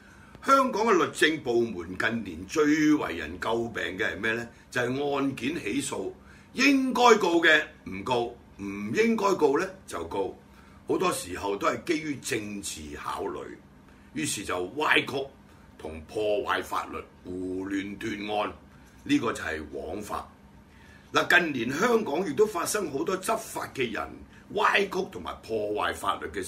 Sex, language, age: male, Chinese, 60-79